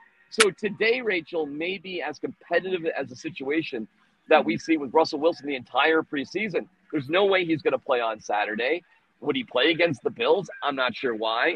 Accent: American